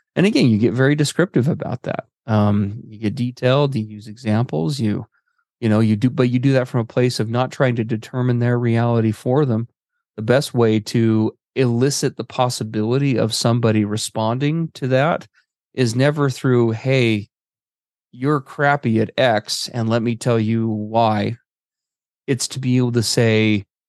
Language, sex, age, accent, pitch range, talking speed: English, male, 30-49, American, 105-125 Hz, 170 wpm